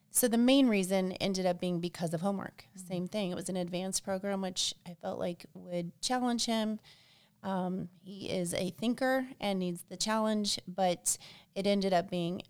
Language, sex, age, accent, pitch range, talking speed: English, female, 30-49, American, 175-200 Hz, 180 wpm